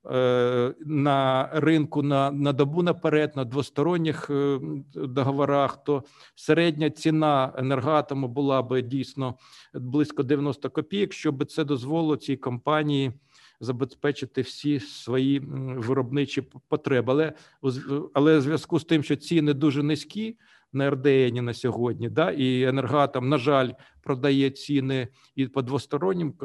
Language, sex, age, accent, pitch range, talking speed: Ukrainian, male, 50-69, native, 135-155 Hz, 120 wpm